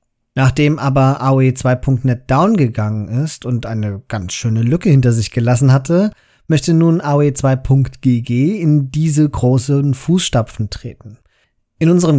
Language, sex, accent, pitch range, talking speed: German, male, German, 115-145 Hz, 135 wpm